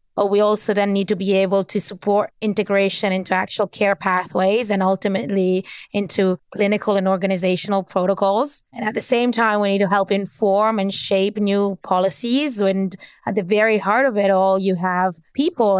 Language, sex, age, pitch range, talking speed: English, female, 20-39, 190-210 Hz, 180 wpm